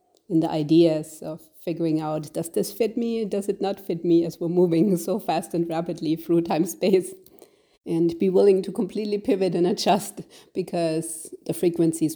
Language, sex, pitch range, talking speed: English, female, 155-190 Hz, 180 wpm